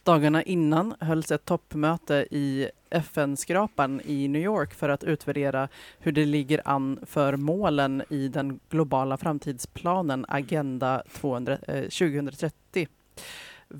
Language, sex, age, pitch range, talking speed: Swedish, female, 30-49, 140-165 Hz, 115 wpm